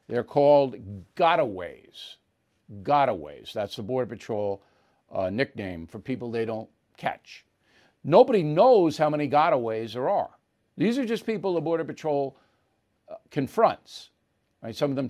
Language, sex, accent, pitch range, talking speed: English, male, American, 135-175 Hz, 135 wpm